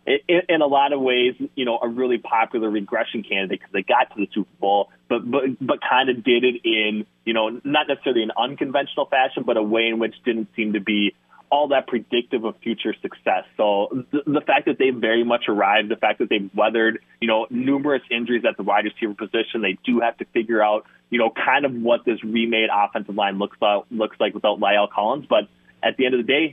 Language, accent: English, American